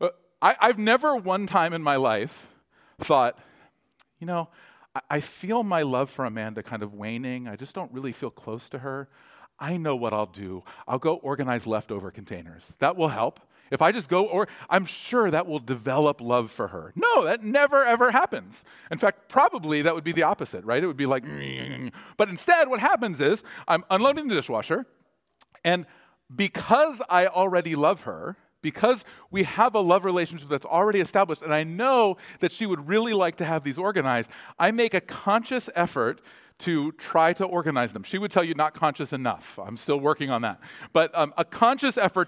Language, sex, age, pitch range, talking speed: English, male, 40-59, 145-215 Hz, 190 wpm